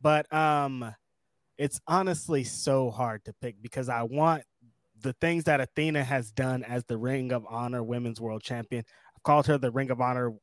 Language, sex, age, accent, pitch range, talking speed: English, male, 20-39, American, 125-150 Hz, 185 wpm